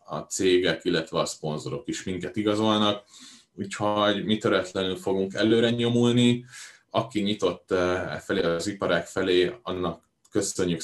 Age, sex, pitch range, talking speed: 30-49, male, 90-115 Hz, 120 wpm